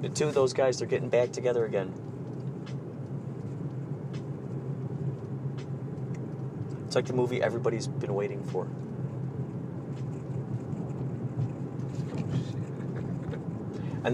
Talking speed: 80 wpm